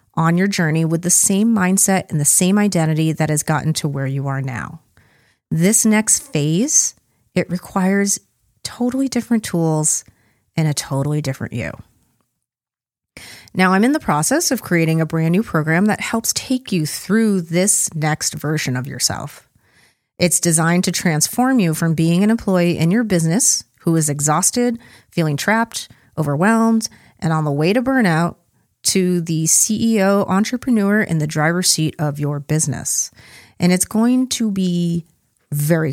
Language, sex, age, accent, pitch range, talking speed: English, female, 30-49, American, 155-200 Hz, 155 wpm